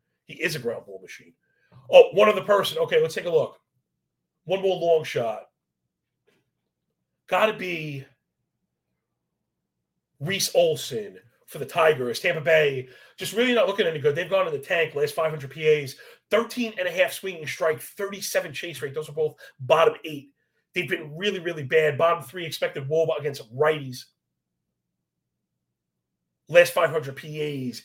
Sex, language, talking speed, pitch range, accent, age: male, English, 145 wpm, 145-215 Hz, American, 30-49